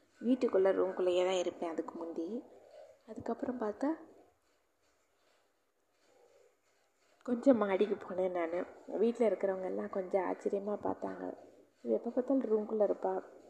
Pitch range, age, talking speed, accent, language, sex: 180-235 Hz, 20-39, 100 wpm, native, Tamil, female